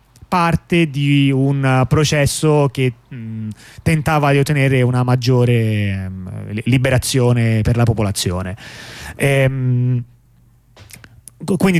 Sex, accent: male, native